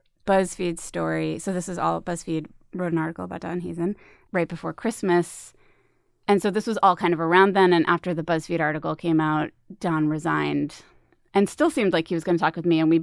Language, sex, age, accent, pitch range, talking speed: English, female, 20-39, American, 155-180 Hz, 215 wpm